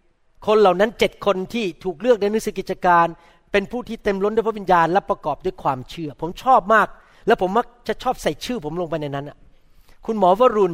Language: Thai